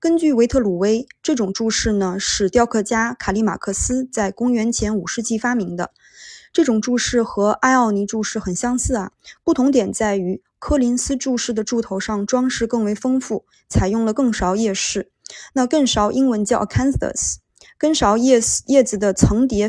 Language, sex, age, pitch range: Chinese, female, 20-39, 195-250 Hz